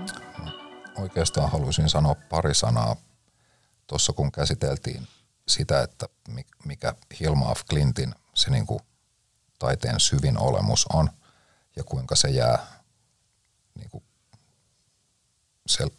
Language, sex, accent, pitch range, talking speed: Finnish, male, native, 75-120 Hz, 100 wpm